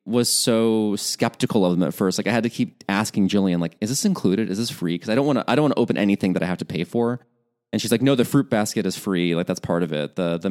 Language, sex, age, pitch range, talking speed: English, male, 30-49, 90-115 Hz, 310 wpm